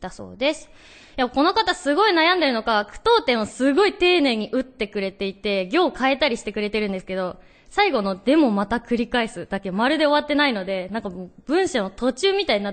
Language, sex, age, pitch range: Japanese, female, 20-39, 205-295 Hz